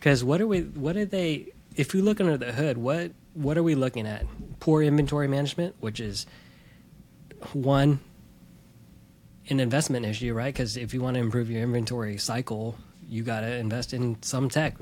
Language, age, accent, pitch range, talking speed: English, 20-39, American, 115-140 Hz, 180 wpm